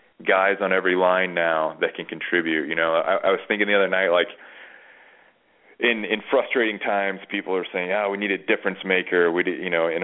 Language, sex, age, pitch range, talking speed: English, male, 30-49, 95-115 Hz, 210 wpm